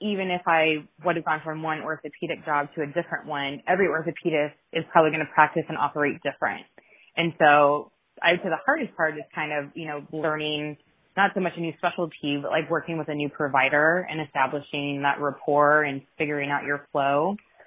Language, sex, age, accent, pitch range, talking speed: English, female, 20-39, American, 150-170 Hz, 205 wpm